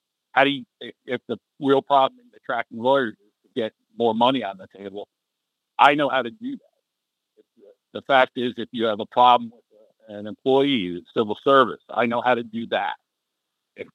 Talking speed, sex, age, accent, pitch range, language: 200 wpm, male, 60-79, American, 105-130 Hz, English